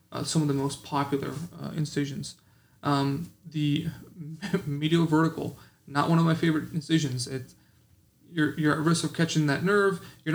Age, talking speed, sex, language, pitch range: 30-49, 160 wpm, male, English, 145-165 Hz